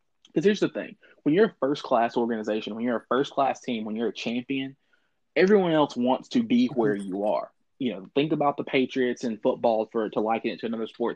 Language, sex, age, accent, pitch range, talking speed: English, male, 20-39, American, 110-135 Hz, 220 wpm